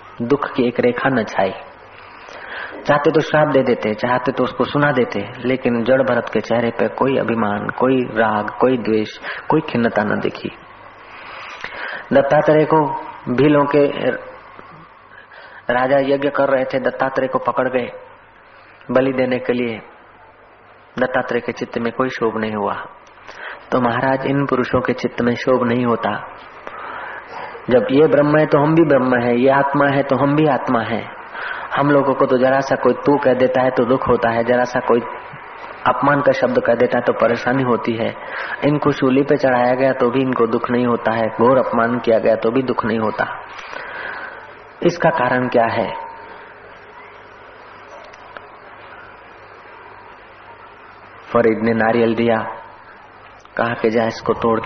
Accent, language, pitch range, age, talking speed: native, Hindi, 115-145 Hz, 30-49, 145 wpm